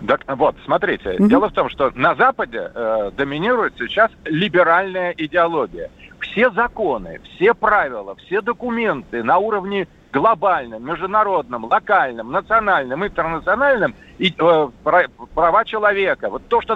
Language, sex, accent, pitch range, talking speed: Russian, male, native, 170-225 Hz, 120 wpm